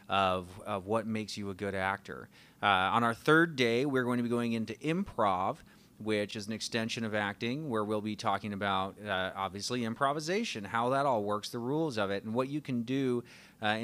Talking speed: 210 wpm